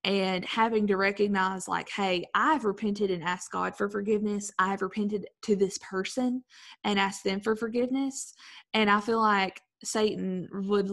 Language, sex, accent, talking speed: English, female, American, 165 wpm